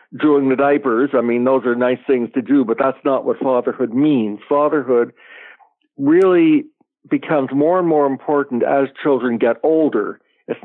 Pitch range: 120-160 Hz